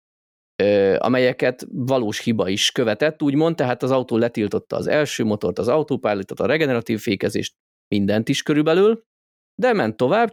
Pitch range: 110-150 Hz